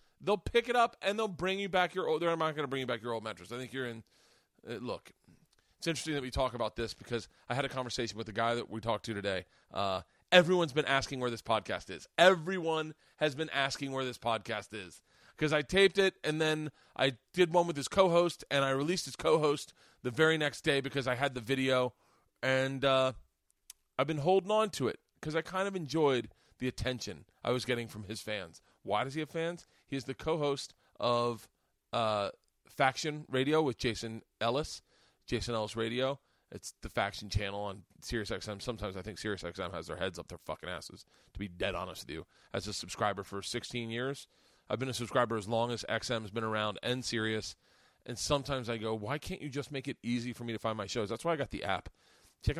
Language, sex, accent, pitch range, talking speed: English, male, American, 110-150 Hz, 220 wpm